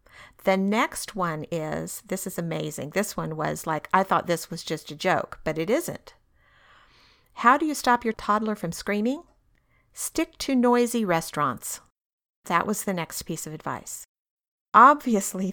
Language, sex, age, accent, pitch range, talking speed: English, female, 50-69, American, 170-220 Hz, 160 wpm